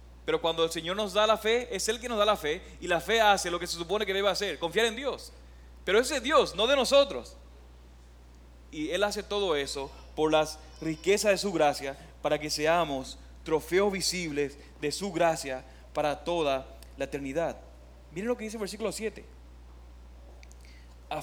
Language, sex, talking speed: Spanish, male, 190 wpm